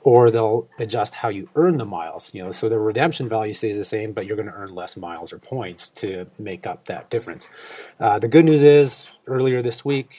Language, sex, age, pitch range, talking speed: English, male, 30-49, 110-125 Hz, 230 wpm